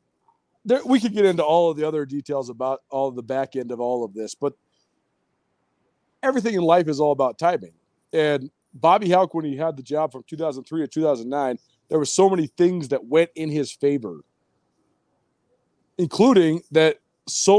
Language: English